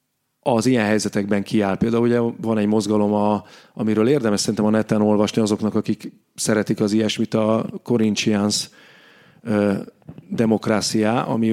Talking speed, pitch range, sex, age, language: 125 wpm, 105-110 Hz, male, 30-49, Hungarian